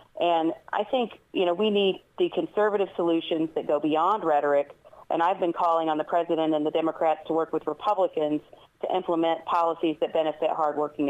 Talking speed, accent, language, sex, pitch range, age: 185 wpm, American, English, female, 160-180 Hz, 40-59